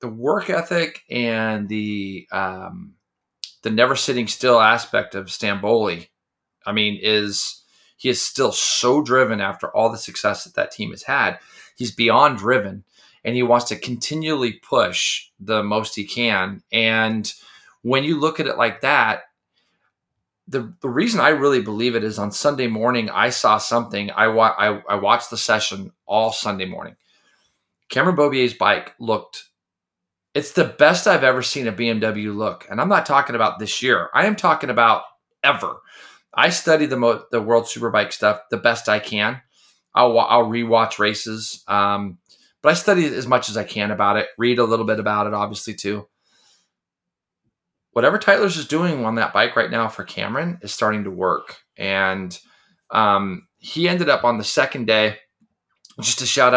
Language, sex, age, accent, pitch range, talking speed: English, male, 30-49, American, 105-125 Hz, 170 wpm